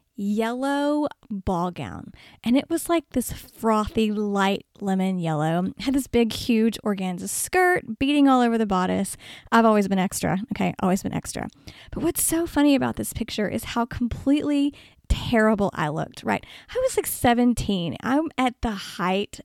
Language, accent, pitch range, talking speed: English, American, 195-265 Hz, 165 wpm